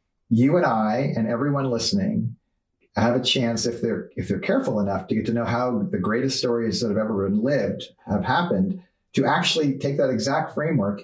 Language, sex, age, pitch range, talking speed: English, male, 40-59, 115-155 Hz, 195 wpm